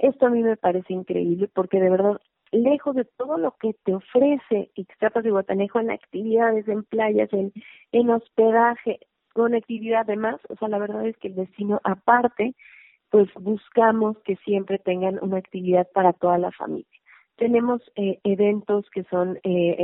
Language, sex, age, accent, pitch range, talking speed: Spanish, female, 30-49, Mexican, 185-225 Hz, 170 wpm